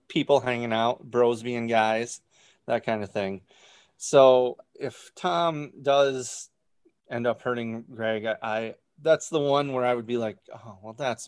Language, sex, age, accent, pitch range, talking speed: English, male, 30-49, American, 110-140 Hz, 165 wpm